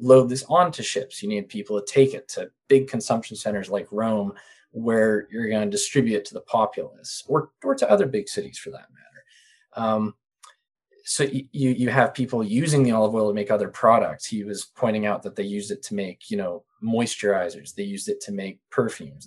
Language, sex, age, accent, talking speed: English, male, 20-39, American, 210 wpm